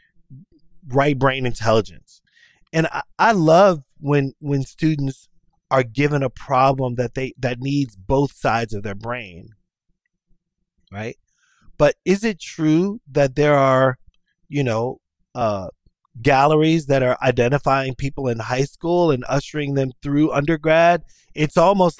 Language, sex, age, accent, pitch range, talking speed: English, male, 30-49, American, 120-155 Hz, 135 wpm